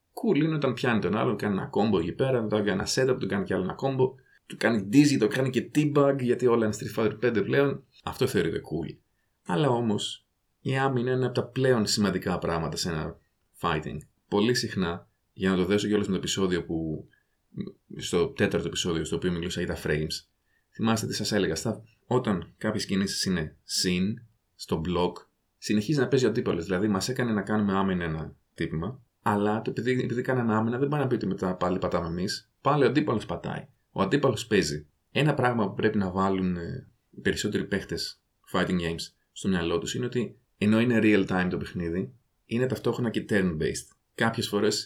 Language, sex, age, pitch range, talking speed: Greek, male, 30-49, 95-120 Hz, 195 wpm